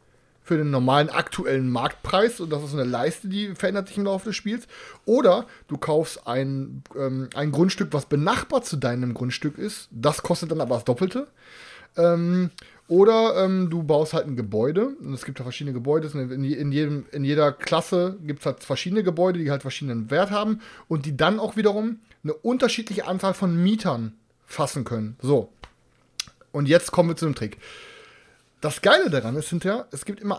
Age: 30-49